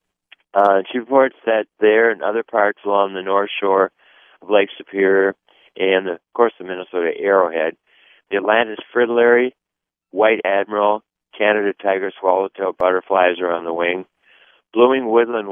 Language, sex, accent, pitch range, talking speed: English, male, American, 95-110 Hz, 140 wpm